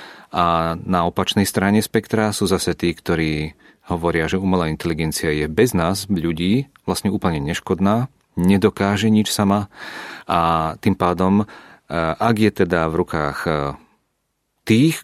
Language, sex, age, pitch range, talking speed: Czech, male, 40-59, 80-100 Hz, 130 wpm